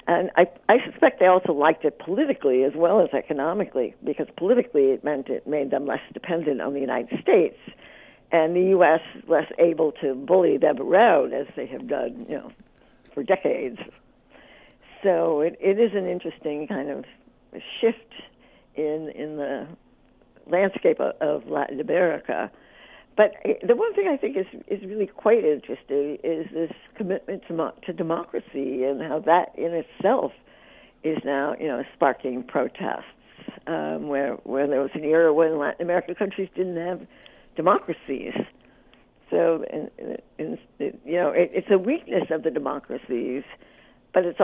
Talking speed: 155 wpm